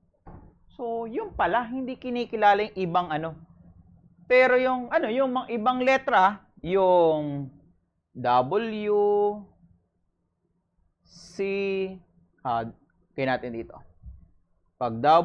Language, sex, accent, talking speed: English, male, Filipino, 90 wpm